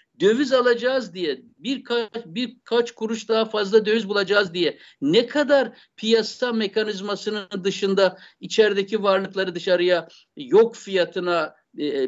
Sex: male